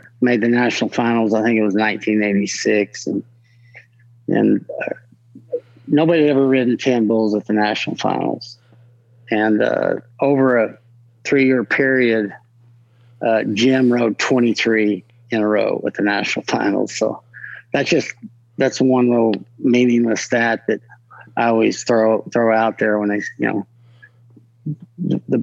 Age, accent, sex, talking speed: 50-69, American, male, 140 wpm